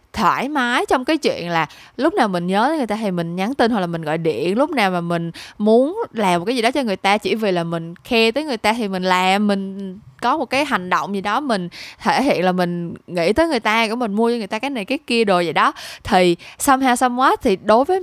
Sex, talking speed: female, 270 wpm